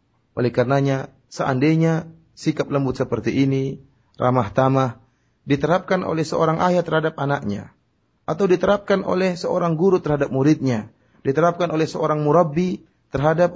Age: 30-49